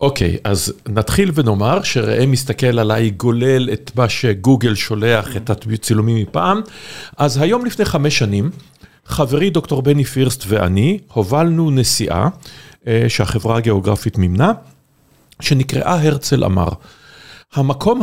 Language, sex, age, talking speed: Hebrew, male, 50-69, 115 wpm